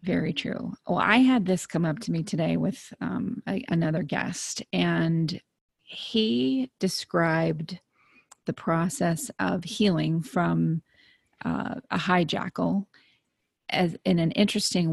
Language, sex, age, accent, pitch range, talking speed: English, female, 30-49, American, 165-200 Hz, 120 wpm